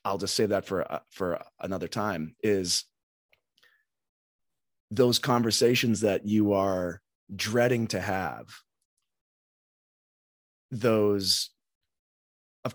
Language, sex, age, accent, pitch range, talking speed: English, male, 30-49, American, 90-115 Hz, 95 wpm